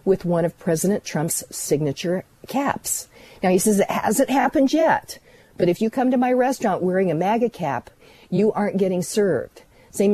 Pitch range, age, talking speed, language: 170-215 Hz, 50-69, 180 wpm, English